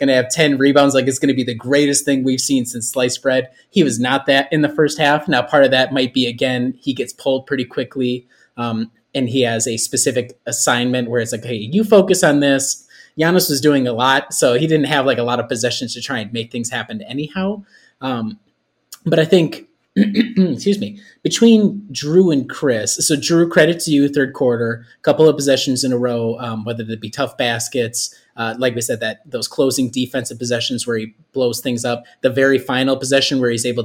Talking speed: 220 wpm